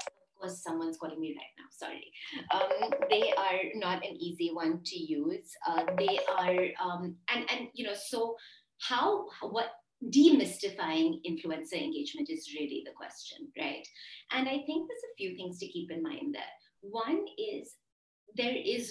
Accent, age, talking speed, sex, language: Indian, 30-49, 160 wpm, female, English